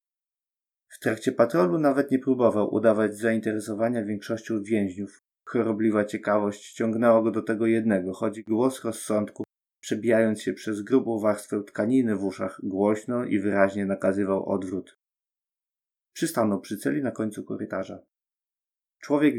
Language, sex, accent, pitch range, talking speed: Polish, male, native, 100-120 Hz, 120 wpm